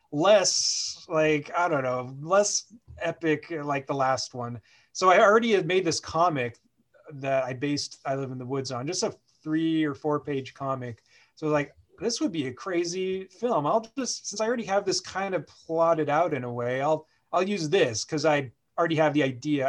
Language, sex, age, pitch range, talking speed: English, male, 30-49, 140-200 Hz, 200 wpm